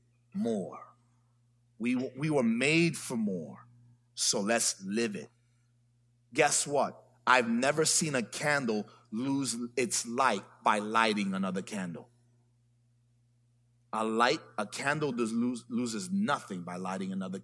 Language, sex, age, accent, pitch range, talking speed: English, male, 40-59, American, 120-125 Hz, 125 wpm